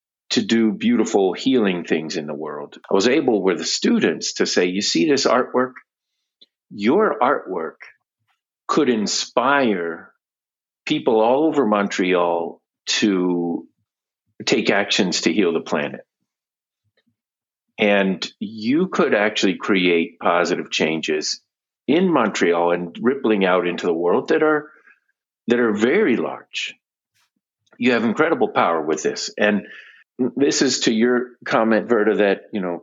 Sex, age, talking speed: male, 50-69, 130 wpm